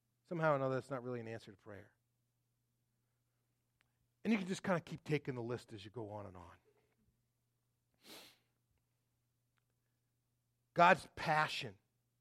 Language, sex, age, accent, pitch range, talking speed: English, male, 40-59, American, 120-160 Hz, 140 wpm